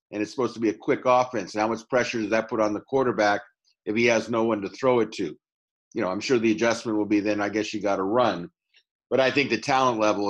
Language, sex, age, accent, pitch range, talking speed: English, male, 50-69, American, 105-120 Hz, 280 wpm